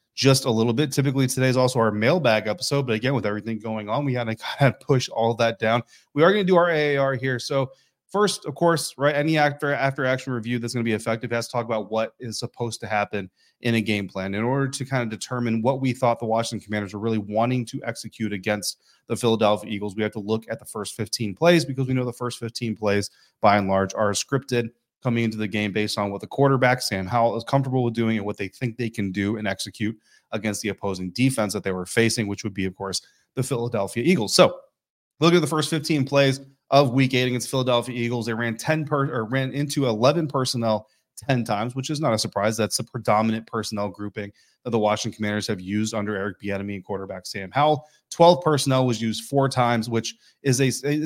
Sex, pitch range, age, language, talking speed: male, 105-130 Hz, 30-49, English, 235 wpm